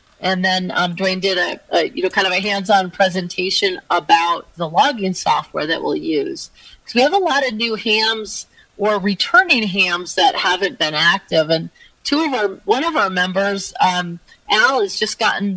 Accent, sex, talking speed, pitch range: American, female, 195 wpm, 190-255 Hz